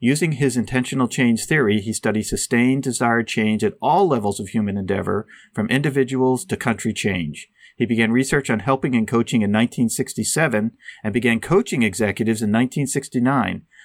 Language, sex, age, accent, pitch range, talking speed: English, male, 40-59, American, 110-140 Hz, 155 wpm